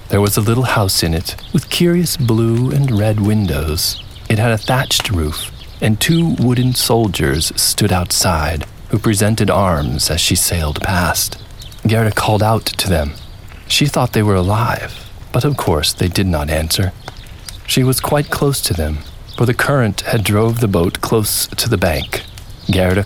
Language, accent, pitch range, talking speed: English, American, 95-120 Hz, 170 wpm